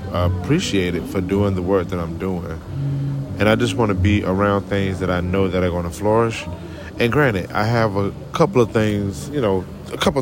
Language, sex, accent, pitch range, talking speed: English, male, American, 90-130 Hz, 225 wpm